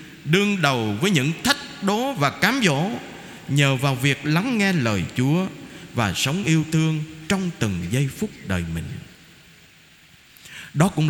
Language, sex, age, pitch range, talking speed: Vietnamese, male, 20-39, 135-200 Hz, 150 wpm